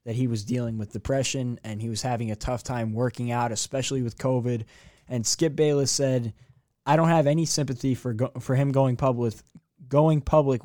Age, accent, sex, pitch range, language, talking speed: 20-39, American, male, 125-145 Hz, English, 195 wpm